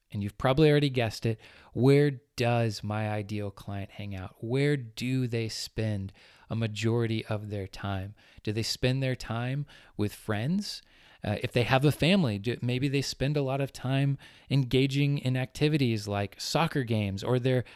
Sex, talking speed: male, 170 wpm